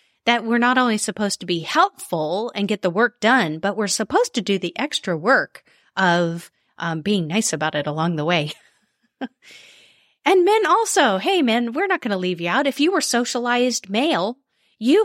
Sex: female